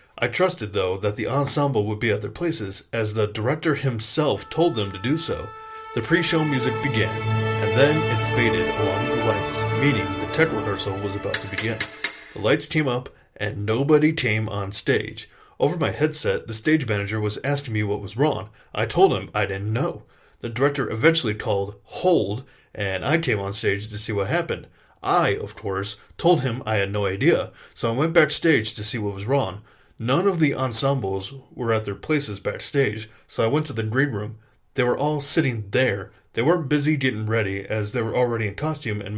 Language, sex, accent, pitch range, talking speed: English, male, American, 105-145 Hz, 200 wpm